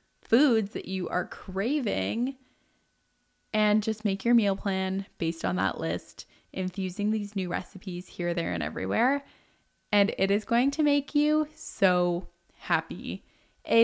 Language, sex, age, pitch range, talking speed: English, female, 20-39, 180-220 Hz, 145 wpm